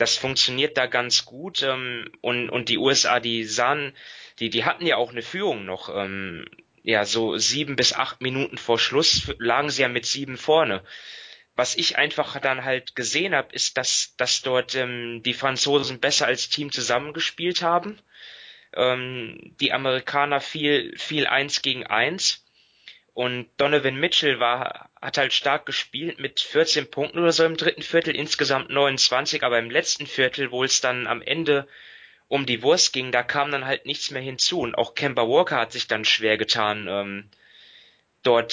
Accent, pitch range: German, 125-150 Hz